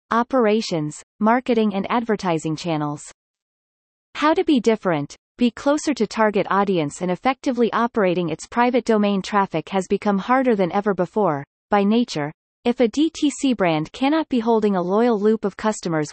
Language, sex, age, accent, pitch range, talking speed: English, female, 30-49, American, 185-245 Hz, 155 wpm